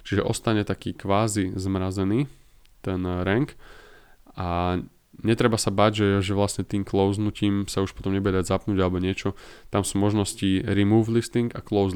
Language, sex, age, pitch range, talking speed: Slovak, male, 20-39, 95-110 Hz, 155 wpm